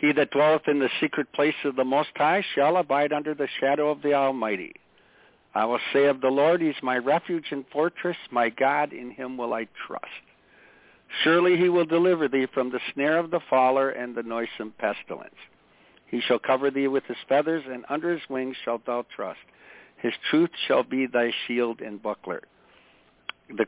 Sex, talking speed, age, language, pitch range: male, 195 wpm, 60-79, English, 125-155 Hz